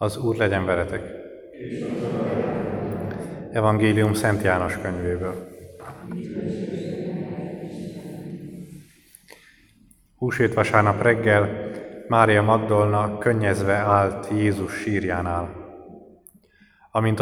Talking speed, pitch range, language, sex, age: 65 wpm, 95-115 Hz, Hungarian, male, 30-49